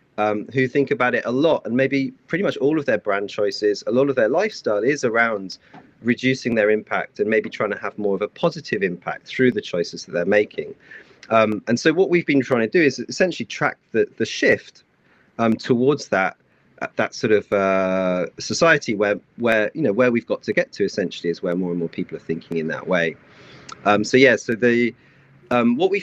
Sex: male